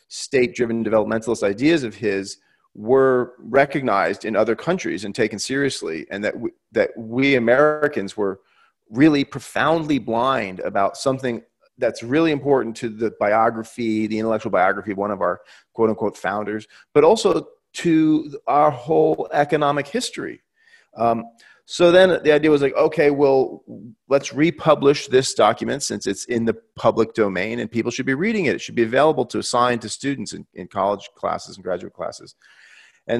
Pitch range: 110-140 Hz